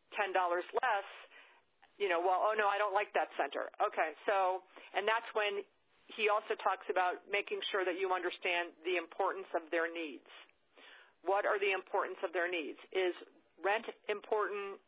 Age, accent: 40-59, American